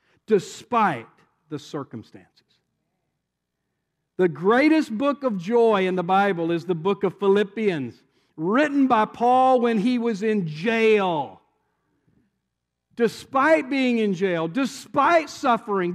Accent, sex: American, male